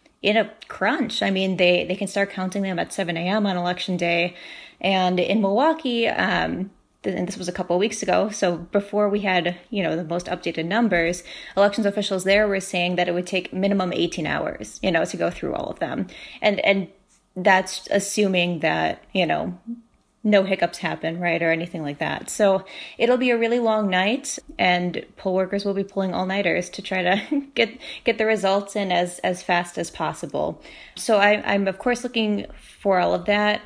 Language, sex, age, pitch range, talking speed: English, female, 20-39, 180-210 Hz, 200 wpm